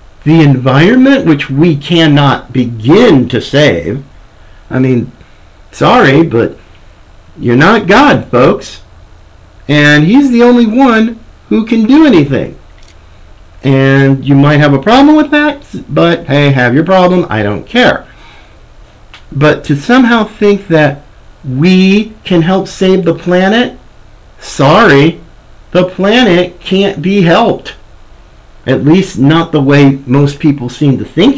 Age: 50-69